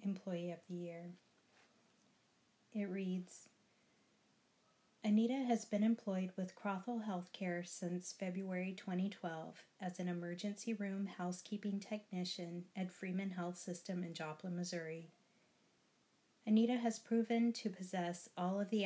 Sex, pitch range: female, 175-210 Hz